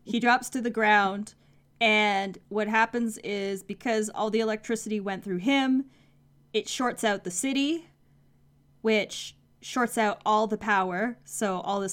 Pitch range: 185-225 Hz